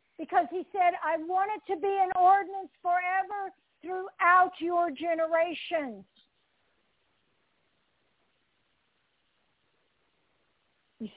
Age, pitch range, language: 60-79, 245-340 Hz, English